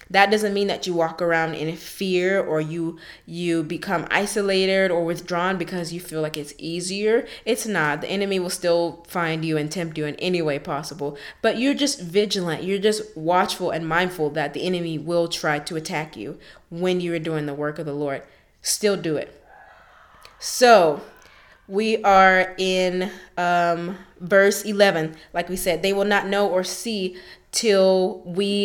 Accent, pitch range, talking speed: American, 165-205 Hz, 175 wpm